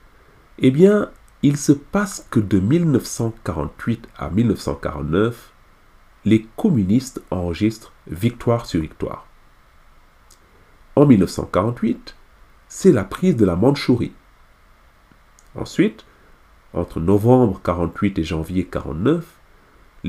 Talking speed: 95 wpm